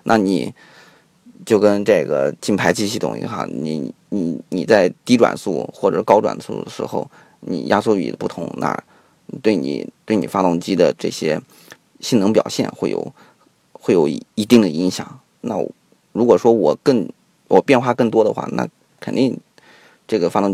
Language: Chinese